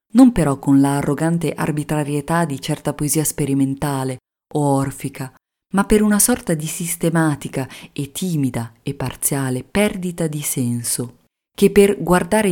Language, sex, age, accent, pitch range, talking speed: Italian, female, 30-49, native, 135-170 Hz, 130 wpm